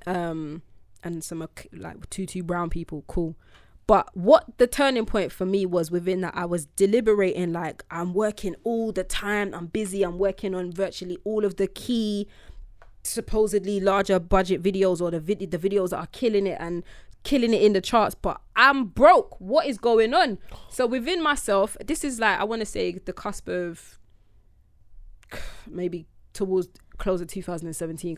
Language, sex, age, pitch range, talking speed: English, female, 20-39, 170-205 Hz, 175 wpm